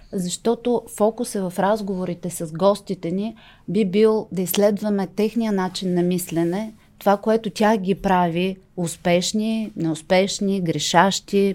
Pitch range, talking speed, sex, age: 175-205 Hz, 120 wpm, female, 30-49